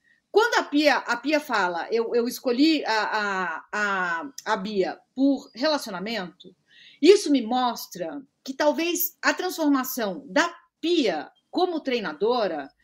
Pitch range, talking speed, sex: 240-325 Hz, 110 wpm, female